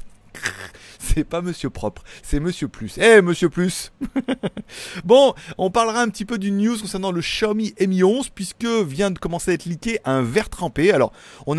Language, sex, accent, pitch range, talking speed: French, male, French, 135-195 Hz, 185 wpm